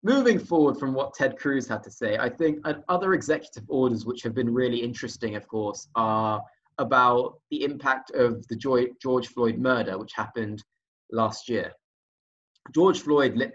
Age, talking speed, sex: 20-39, 165 wpm, male